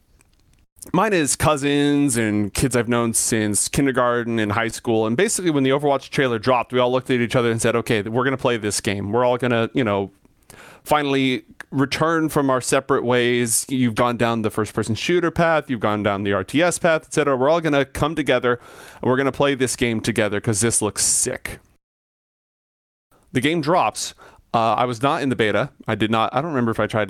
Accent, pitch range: American, 110-135 Hz